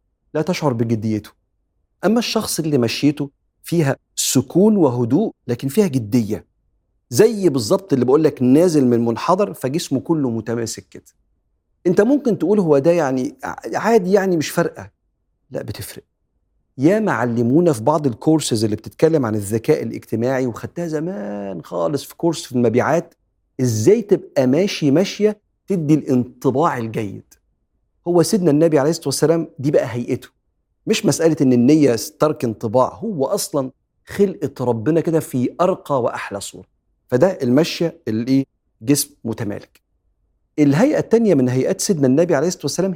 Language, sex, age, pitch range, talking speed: Arabic, male, 50-69, 120-165 Hz, 135 wpm